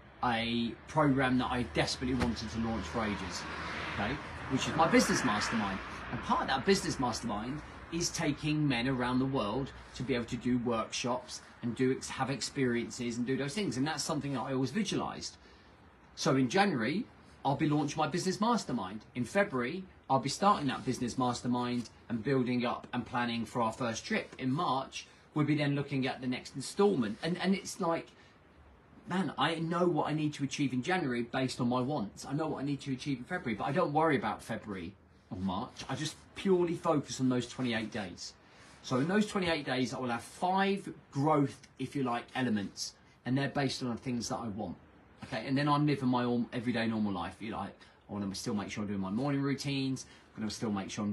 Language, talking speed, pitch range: English, 210 wpm, 110-145 Hz